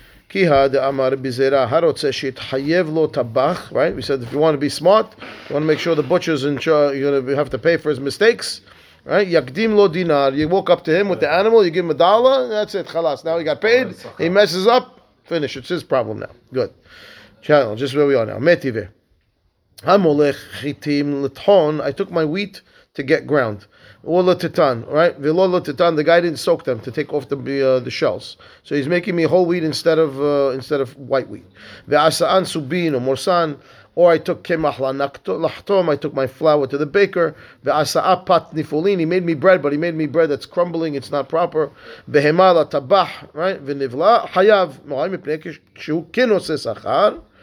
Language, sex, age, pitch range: English, male, 30-49, 140-175 Hz